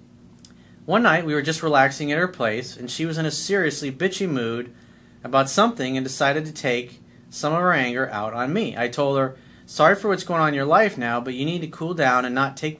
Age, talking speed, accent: 30-49, 240 wpm, American